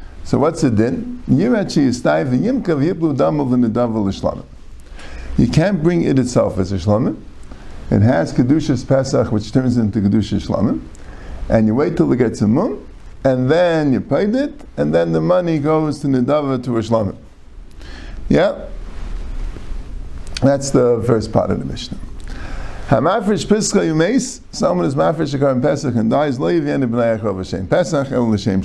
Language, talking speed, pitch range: English, 170 wpm, 110-155 Hz